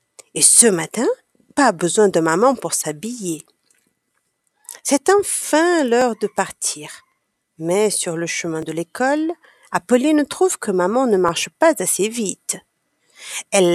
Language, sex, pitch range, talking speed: French, female, 185-310 Hz, 130 wpm